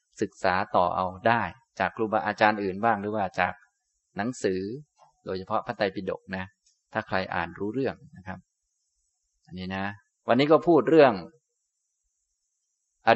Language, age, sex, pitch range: Thai, 20-39, male, 95-125 Hz